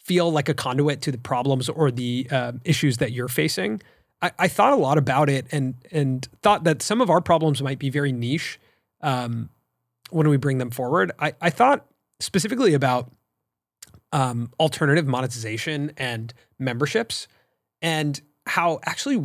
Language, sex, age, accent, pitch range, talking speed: English, male, 30-49, American, 125-155 Hz, 160 wpm